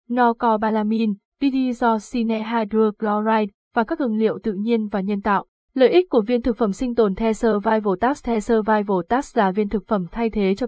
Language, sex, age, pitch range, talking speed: Vietnamese, female, 20-39, 195-235 Hz, 175 wpm